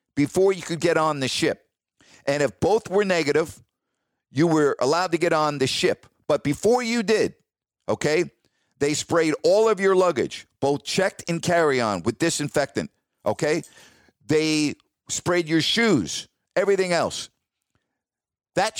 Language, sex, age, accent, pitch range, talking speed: English, male, 50-69, American, 150-195 Hz, 145 wpm